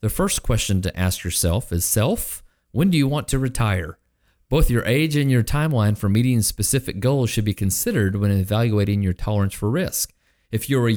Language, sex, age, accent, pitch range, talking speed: English, male, 40-59, American, 95-125 Hz, 195 wpm